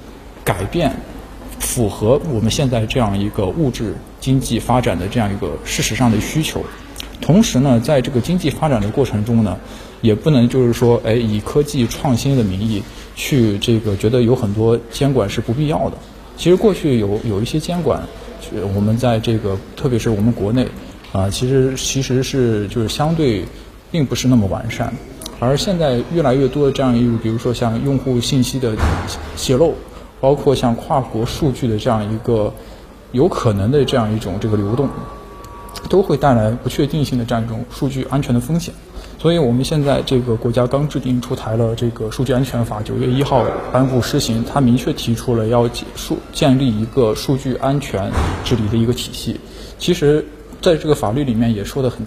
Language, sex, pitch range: Chinese, male, 110-135 Hz